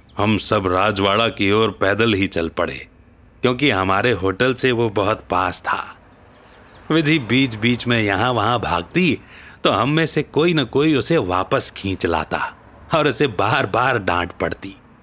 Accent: native